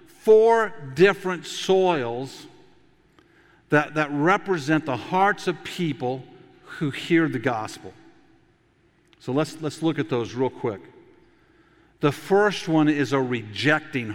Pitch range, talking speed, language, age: 120-165 Hz, 120 wpm, English, 50-69